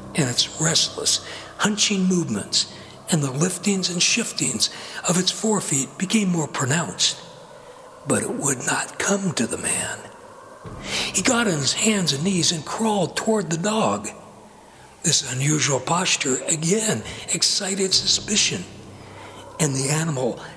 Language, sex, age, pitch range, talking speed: English, male, 60-79, 155-210 Hz, 130 wpm